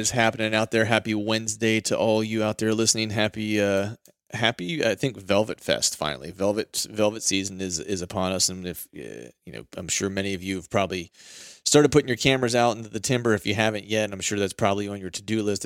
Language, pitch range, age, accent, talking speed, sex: English, 95-110 Hz, 30-49, American, 225 wpm, male